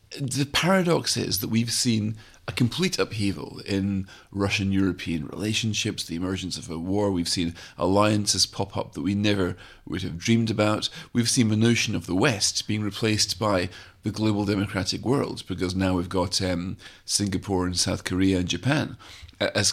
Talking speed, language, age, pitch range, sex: 165 wpm, English, 40-59, 95-115 Hz, male